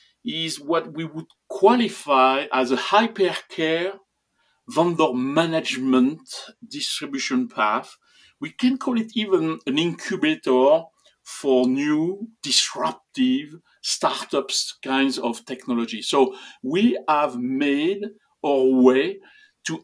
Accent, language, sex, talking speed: French, English, male, 105 wpm